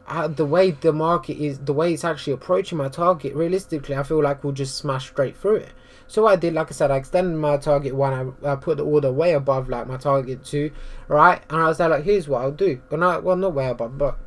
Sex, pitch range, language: male, 135-165 Hz, English